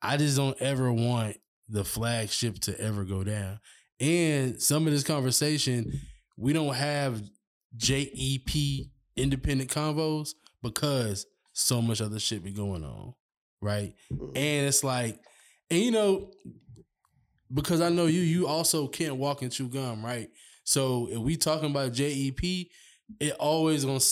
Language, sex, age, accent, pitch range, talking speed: English, male, 20-39, American, 120-150 Hz, 145 wpm